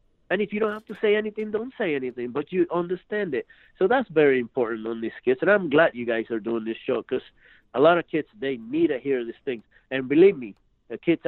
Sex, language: male, English